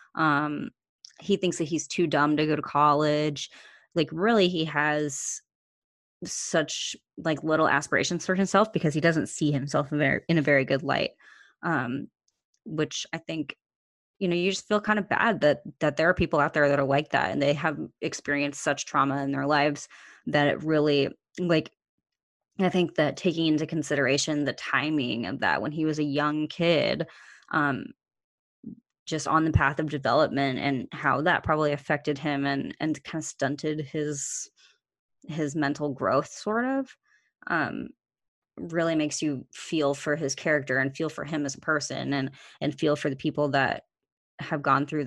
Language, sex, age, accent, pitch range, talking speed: English, female, 20-39, American, 145-165 Hz, 175 wpm